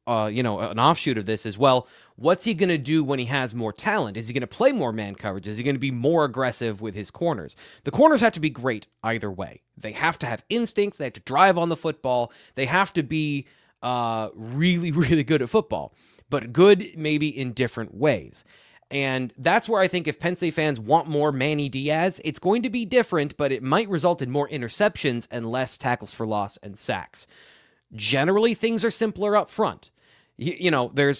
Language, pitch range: English, 125-175 Hz